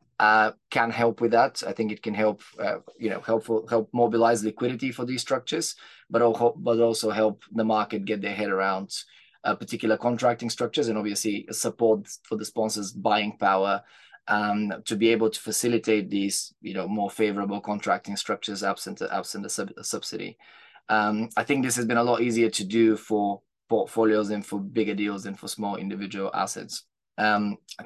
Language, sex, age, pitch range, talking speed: English, male, 20-39, 105-115 Hz, 185 wpm